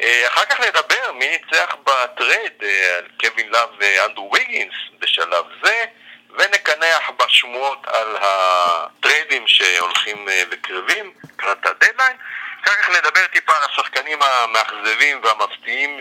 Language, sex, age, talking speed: Hebrew, male, 40-59, 105 wpm